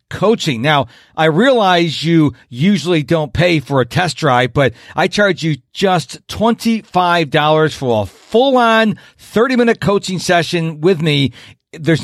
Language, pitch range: English, 130-185 Hz